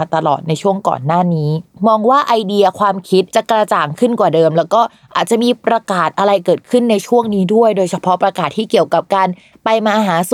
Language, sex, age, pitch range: Thai, female, 20-39, 170-225 Hz